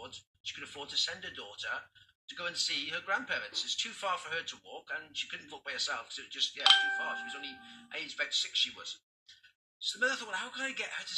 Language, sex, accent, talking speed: English, male, British, 280 wpm